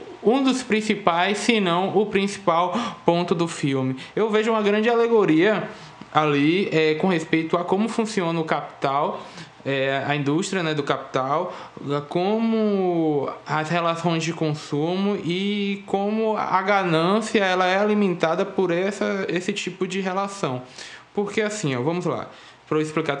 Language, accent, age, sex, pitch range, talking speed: Portuguese, Brazilian, 20-39, male, 150-195 Hz, 130 wpm